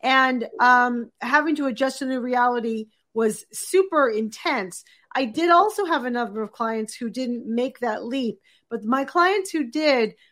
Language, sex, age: English, female, 40-59